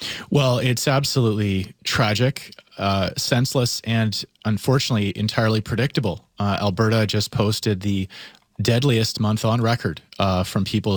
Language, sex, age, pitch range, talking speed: English, male, 30-49, 105-130 Hz, 120 wpm